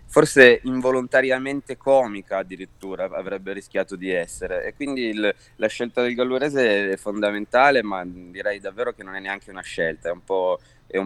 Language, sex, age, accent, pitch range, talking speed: Italian, male, 20-39, native, 90-120 Hz, 150 wpm